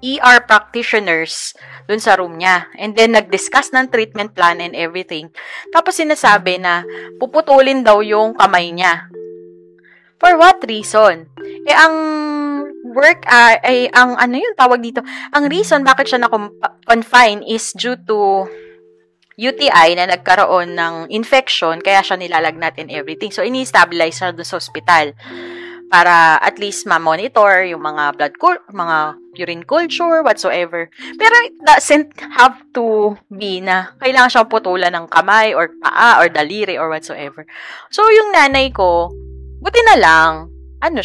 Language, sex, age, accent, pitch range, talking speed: Filipino, female, 20-39, native, 170-265 Hz, 145 wpm